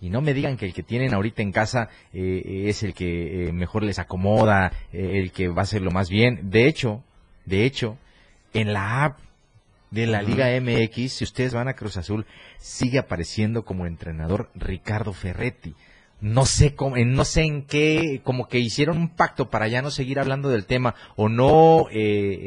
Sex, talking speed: male, 190 wpm